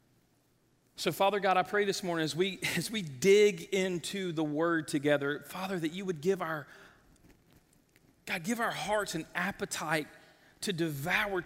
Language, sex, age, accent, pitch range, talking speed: English, male, 40-59, American, 175-235 Hz, 155 wpm